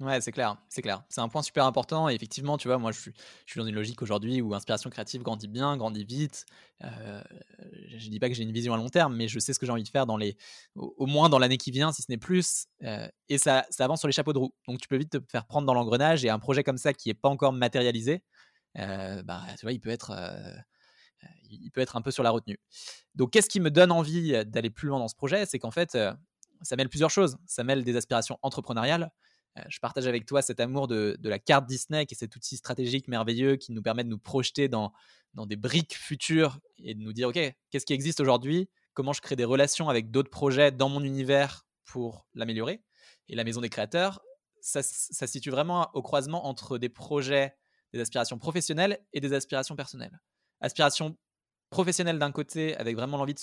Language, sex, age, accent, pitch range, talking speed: French, male, 20-39, French, 120-150 Hz, 235 wpm